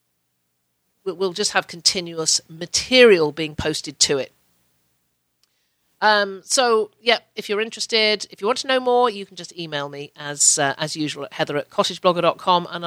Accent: British